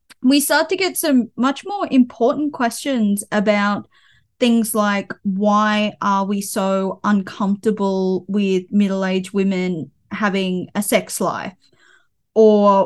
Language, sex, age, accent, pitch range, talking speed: English, female, 20-39, Australian, 195-220 Hz, 115 wpm